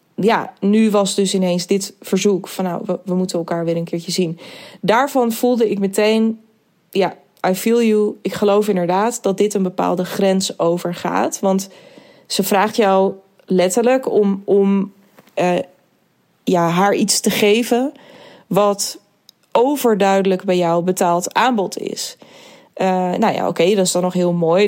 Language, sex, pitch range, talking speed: Dutch, female, 190-220 Hz, 160 wpm